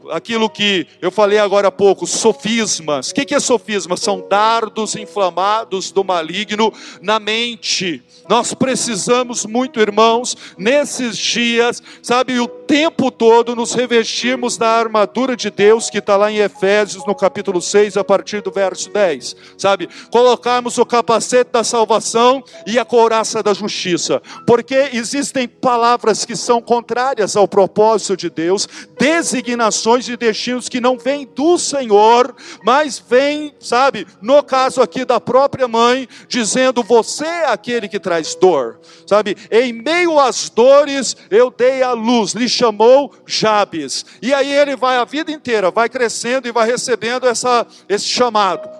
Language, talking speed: Portuguese, 150 wpm